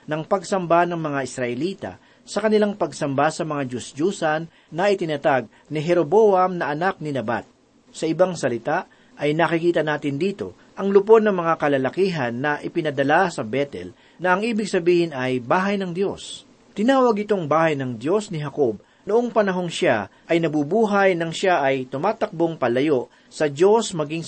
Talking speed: 155 wpm